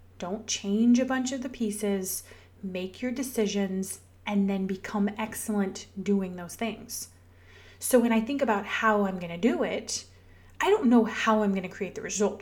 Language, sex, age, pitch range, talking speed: English, female, 30-49, 185-235 Hz, 185 wpm